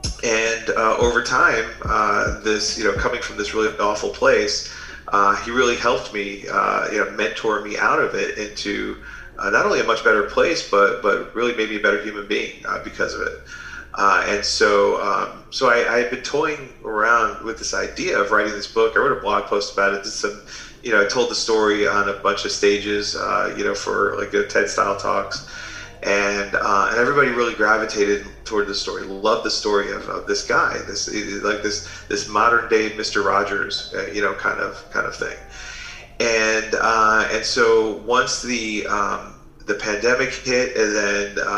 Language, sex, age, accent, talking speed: English, male, 30-49, American, 200 wpm